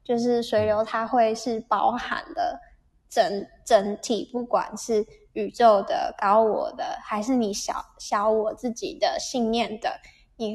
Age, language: 10-29, Chinese